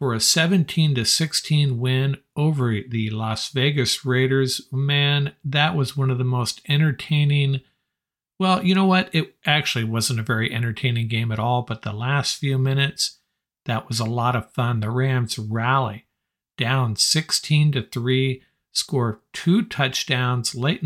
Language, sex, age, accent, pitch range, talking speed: English, male, 50-69, American, 120-145 Hz, 145 wpm